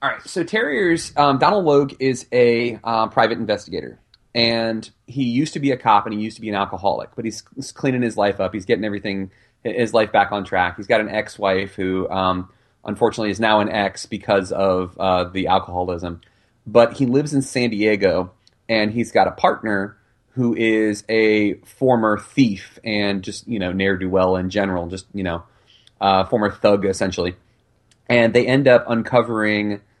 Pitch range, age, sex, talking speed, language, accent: 95-120 Hz, 30-49, male, 185 wpm, English, American